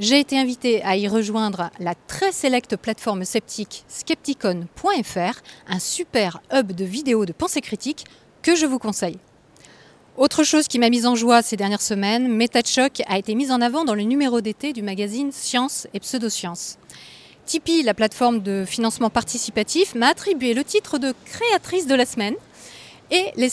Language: French